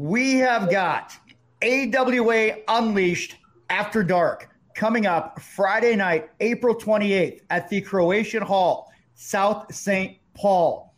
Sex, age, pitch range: male, 40-59, 175-220 Hz